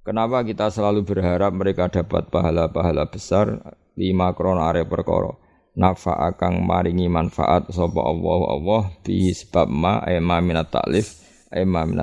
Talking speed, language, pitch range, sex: 125 wpm, Indonesian, 85-105 Hz, male